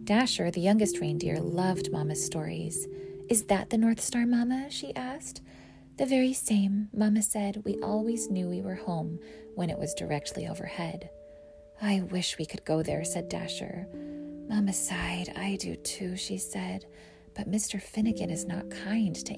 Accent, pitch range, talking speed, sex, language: American, 135-210 Hz, 165 wpm, female, English